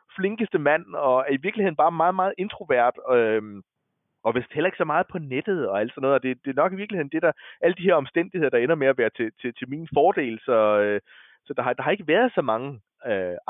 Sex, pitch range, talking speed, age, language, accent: male, 130-175 Hz, 260 wpm, 20-39, Danish, native